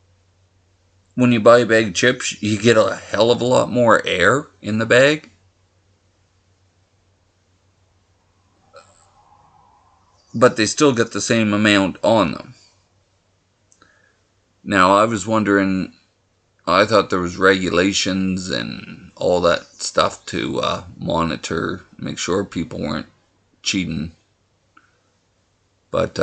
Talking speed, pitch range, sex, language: 115 wpm, 95-110 Hz, male, English